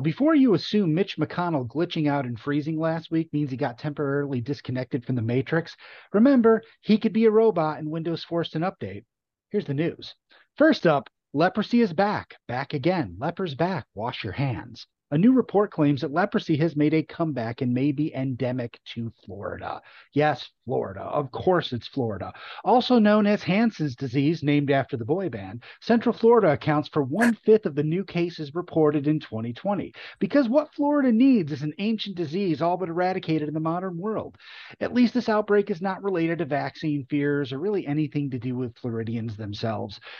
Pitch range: 140-195 Hz